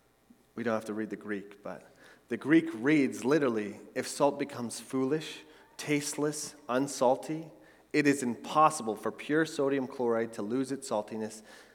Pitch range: 105-140 Hz